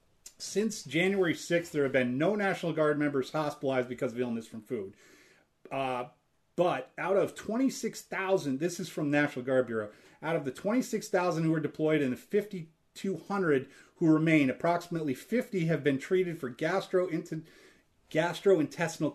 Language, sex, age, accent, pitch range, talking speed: English, male, 30-49, American, 140-185 Hz, 145 wpm